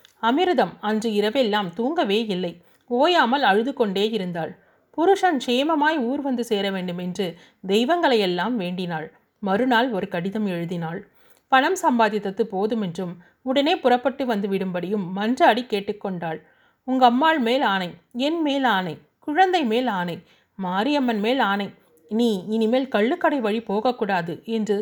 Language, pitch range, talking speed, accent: Tamil, 195-265 Hz, 120 wpm, native